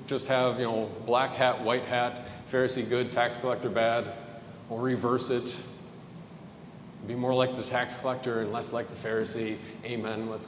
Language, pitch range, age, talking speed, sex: English, 120-150 Hz, 40-59, 165 wpm, male